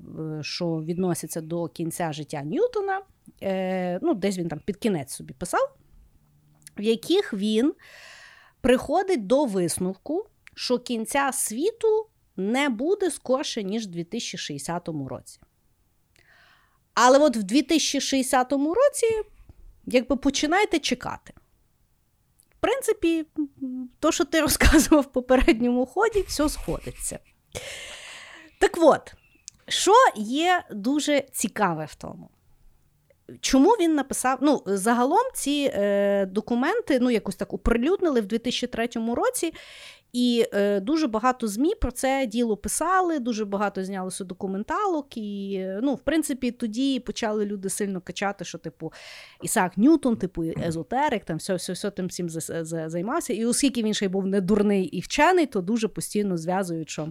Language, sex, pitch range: Ukrainian, female, 185-285 Hz